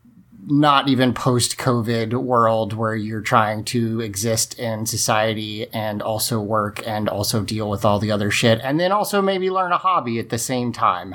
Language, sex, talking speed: English, male, 185 wpm